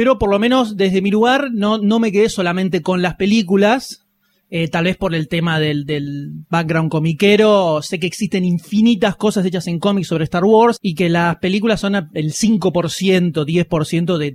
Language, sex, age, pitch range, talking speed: Spanish, male, 30-49, 175-230 Hz, 190 wpm